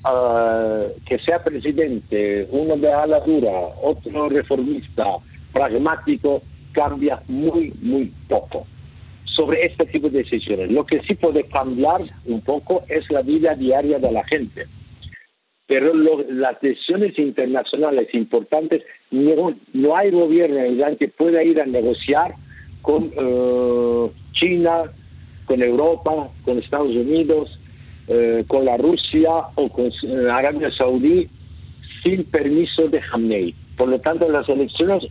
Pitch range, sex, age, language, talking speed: 125-165 Hz, male, 50-69, Spanish, 130 wpm